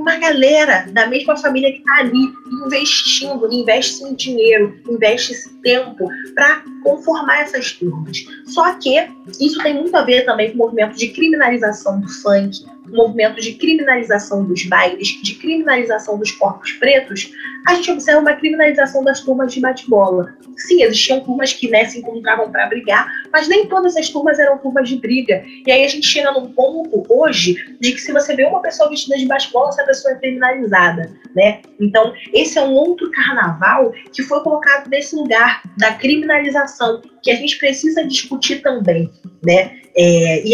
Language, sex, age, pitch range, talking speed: Portuguese, female, 20-39, 215-285 Hz, 170 wpm